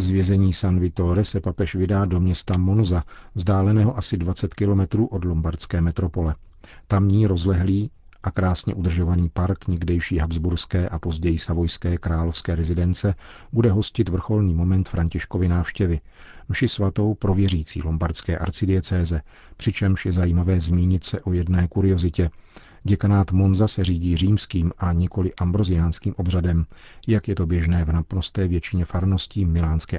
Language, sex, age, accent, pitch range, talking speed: Czech, male, 40-59, native, 85-100 Hz, 135 wpm